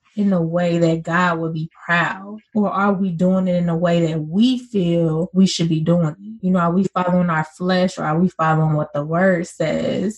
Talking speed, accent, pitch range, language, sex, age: 230 wpm, American, 175-210 Hz, English, female, 20-39